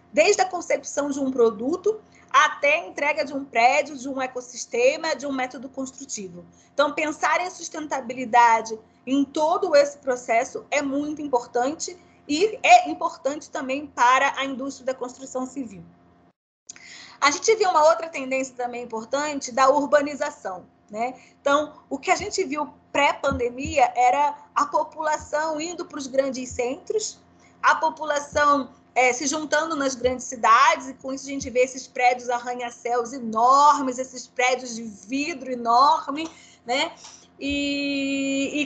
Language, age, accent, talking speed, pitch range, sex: Portuguese, 20-39, Brazilian, 145 wpm, 255-310 Hz, female